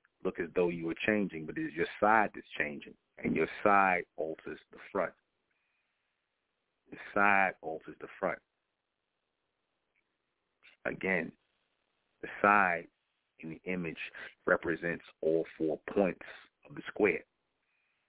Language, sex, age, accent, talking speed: English, male, 40-59, American, 125 wpm